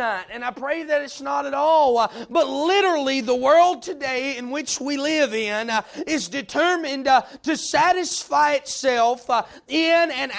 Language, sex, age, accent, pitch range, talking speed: English, male, 30-49, American, 250-325 Hz, 145 wpm